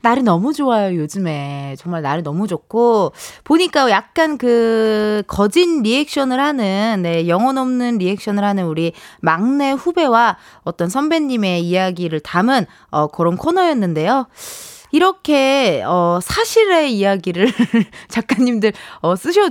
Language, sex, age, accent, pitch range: Korean, female, 20-39, native, 185-285 Hz